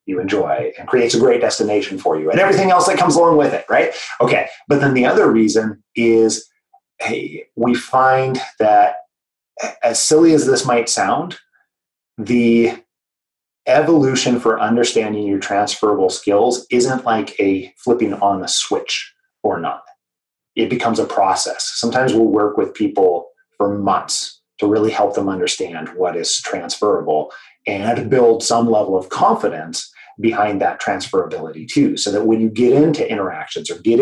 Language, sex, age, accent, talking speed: English, male, 30-49, American, 155 wpm